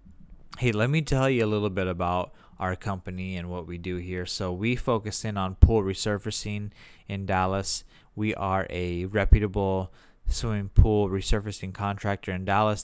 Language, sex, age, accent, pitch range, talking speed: English, male, 20-39, American, 95-110 Hz, 165 wpm